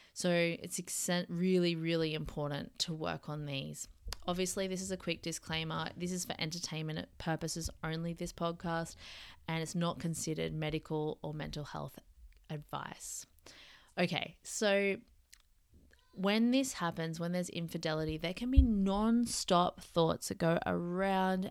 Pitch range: 150-180 Hz